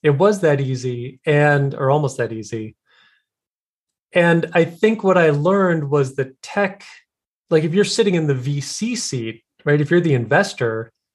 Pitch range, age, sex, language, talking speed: 125-165 Hz, 30-49, male, English, 165 wpm